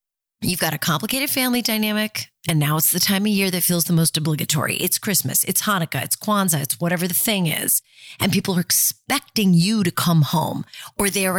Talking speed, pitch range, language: 210 wpm, 160-215 Hz, English